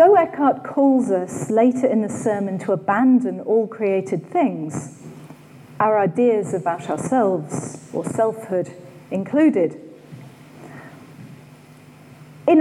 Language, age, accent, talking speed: English, 40-59, British, 100 wpm